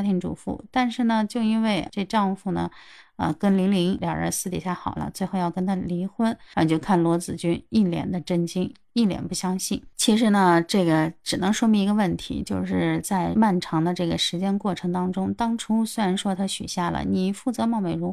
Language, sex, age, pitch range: Chinese, female, 30-49, 175-215 Hz